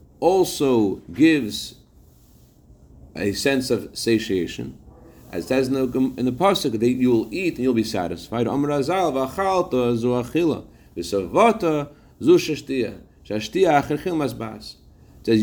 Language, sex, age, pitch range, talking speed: English, male, 40-59, 100-135 Hz, 95 wpm